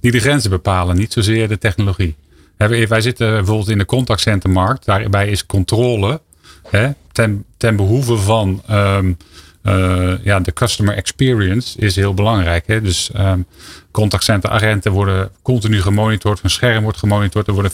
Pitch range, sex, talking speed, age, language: 100-120 Hz, male, 150 wpm, 40-59, Dutch